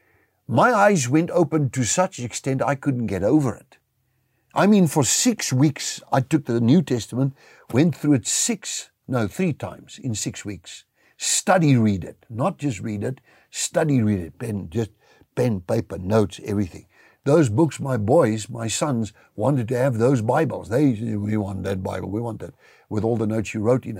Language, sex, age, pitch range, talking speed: English, male, 60-79, 110-140 Hz, 185 wpm